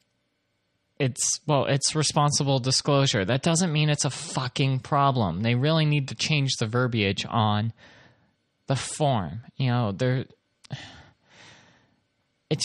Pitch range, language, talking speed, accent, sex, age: 120-175 Hz, English, 125 wpm, American, male, 30-49